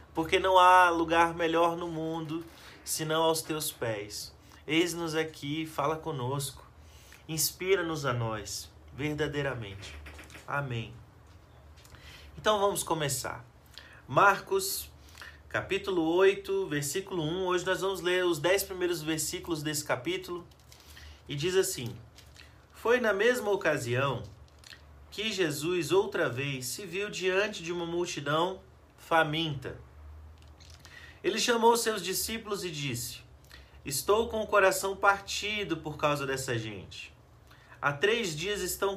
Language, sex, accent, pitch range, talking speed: Portuguese, male, Brazilian, 120-190 Hz, 115 wpm